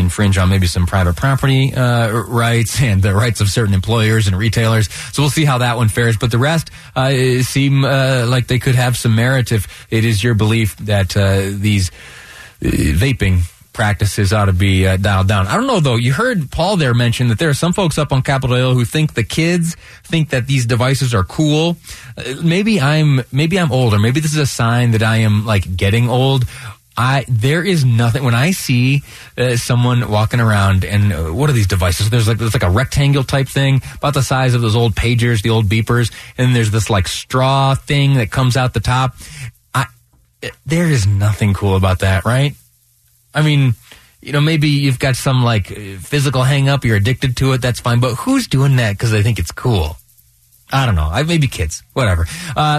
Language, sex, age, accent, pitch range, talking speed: English, male, 20-39, American, 110-135 Hz, 210 wpm